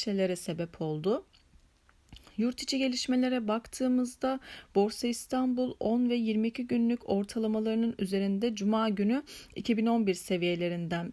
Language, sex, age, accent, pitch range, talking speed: Turkish, female, 40-59, native, 195-245 Hz, 95 wpm